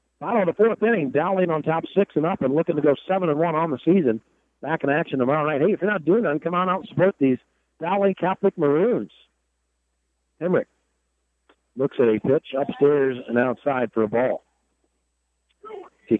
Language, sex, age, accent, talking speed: English, male, 60-79, American, 200 wpm